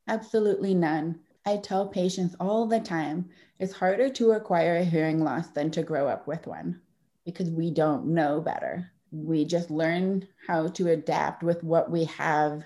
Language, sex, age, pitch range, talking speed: English, female, 30-49, 150-180 Hz, 170 wpm